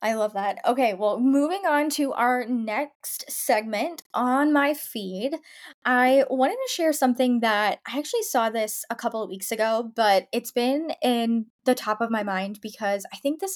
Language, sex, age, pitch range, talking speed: English, female, 10-29, 210-270 Hz, 185 wpm